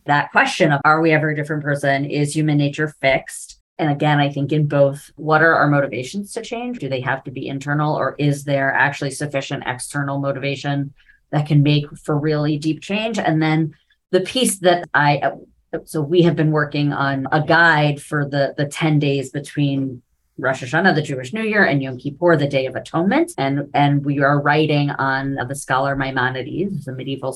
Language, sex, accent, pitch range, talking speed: English, female, American, 135-155 Hz, 195 wpm